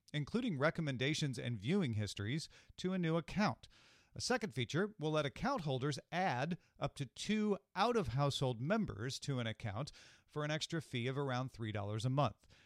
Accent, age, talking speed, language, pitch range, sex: American, 40-59, 160 wpm, English, 110-145 Hz, male